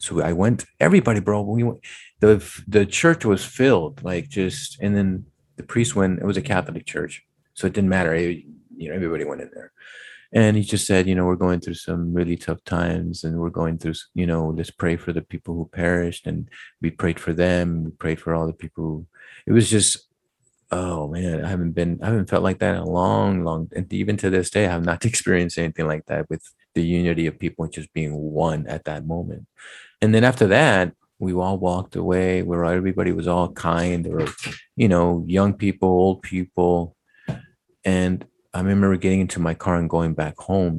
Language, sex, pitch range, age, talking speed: English, male, 80-95 Hz, 30-49, 210 wpm